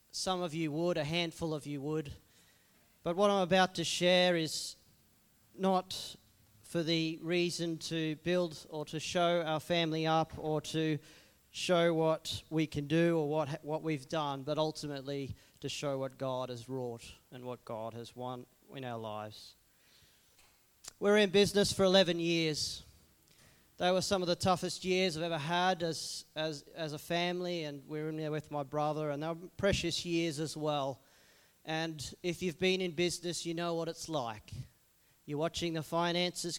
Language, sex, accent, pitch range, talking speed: English, male, Australian, 145-170 Hz, 175 wpm